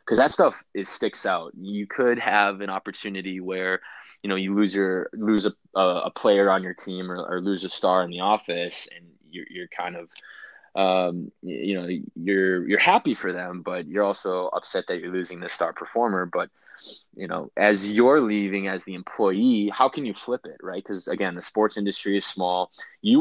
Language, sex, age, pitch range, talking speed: English, male, 20-39, 90-105 Hz, 200 wpm